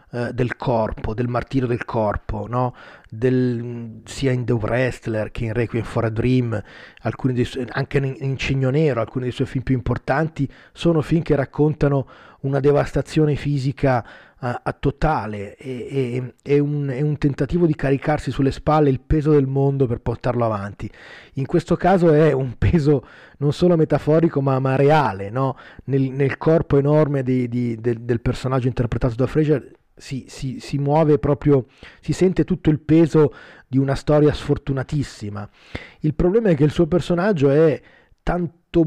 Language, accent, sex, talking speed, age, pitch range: Italian, native, male, 160 wpm, 30-49, 125-150 Hz